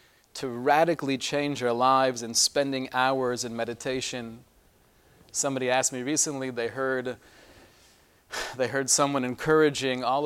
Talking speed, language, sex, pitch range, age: 125 wpm, English, male, 125-155 Hz, 40-59